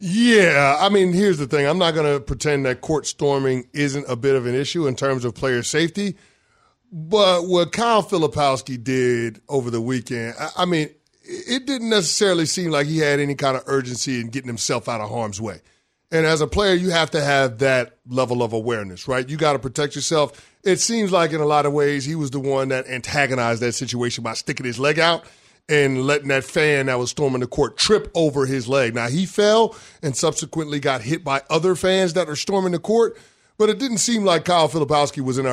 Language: English